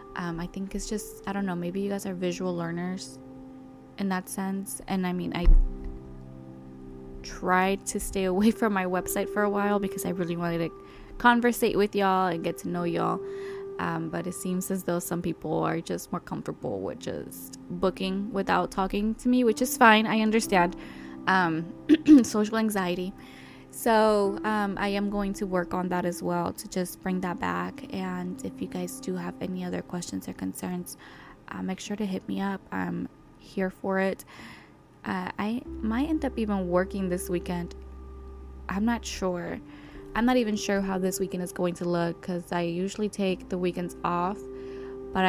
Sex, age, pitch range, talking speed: female, 10-29, 130-200 Hz, 185 wpm